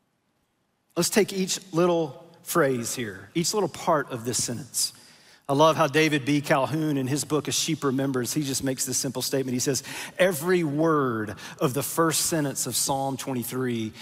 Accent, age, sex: American, 40-59, male